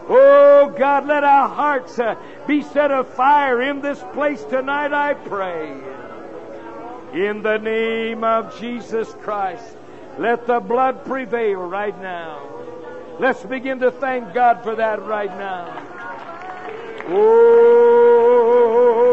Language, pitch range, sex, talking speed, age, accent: English, 230-300 Hz, male, 115 wpm, 60-79, American